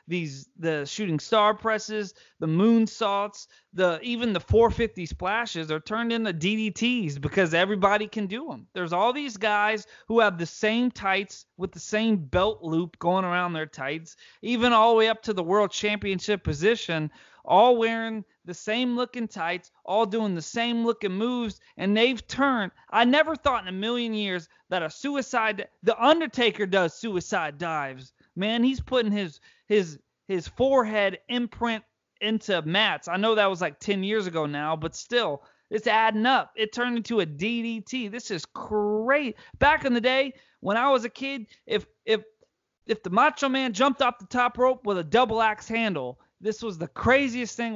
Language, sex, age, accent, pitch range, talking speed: English, male, 30-49, American, 185-240 Hz, 175 wpm